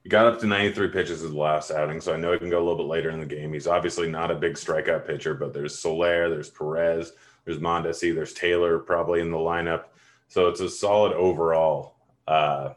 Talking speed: 230 wpm